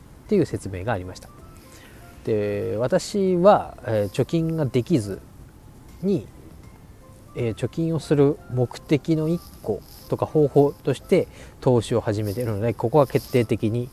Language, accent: Japanese, native